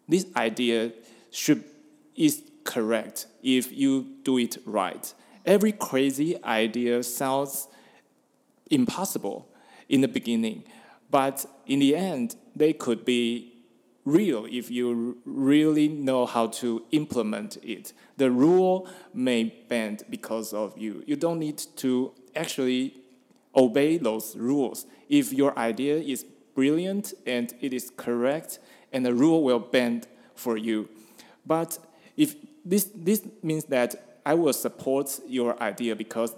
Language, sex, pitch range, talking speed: English, male, 120-155 Hz, 125 wpm